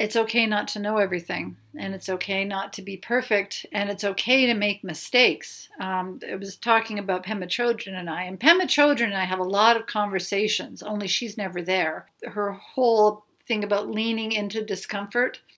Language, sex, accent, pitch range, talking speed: English, female, American, 190-240 Hz, 190 wpm